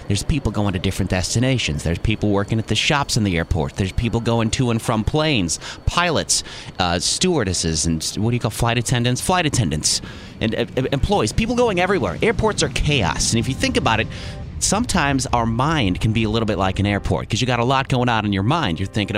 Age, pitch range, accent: 30-49, 95-145 Hz, American